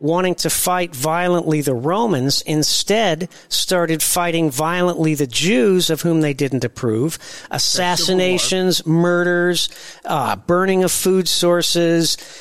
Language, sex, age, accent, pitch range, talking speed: English, male, 50-69, American, 150-190 Hz, 115 wpm